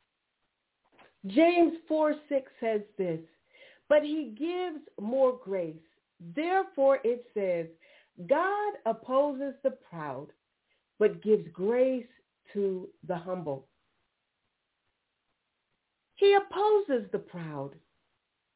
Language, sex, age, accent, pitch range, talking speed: English, female, 40-59, American, 255-360 Hz, 85 wpm